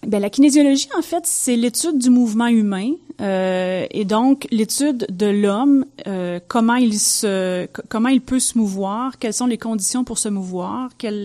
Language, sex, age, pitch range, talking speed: French, female, 30-49, 180-225 Hz, 175 wpm